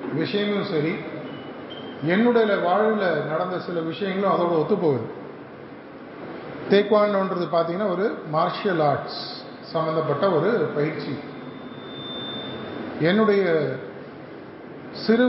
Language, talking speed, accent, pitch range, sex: Tamil, 80 wpm, native, 155-180 Hz, male